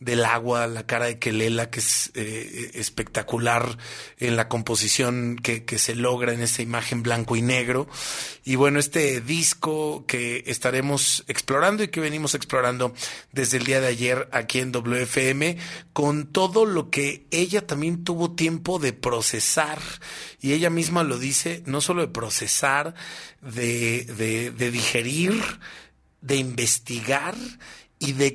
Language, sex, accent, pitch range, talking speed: Spanish, male, Mexican, 125-160 Hz, 145 wpm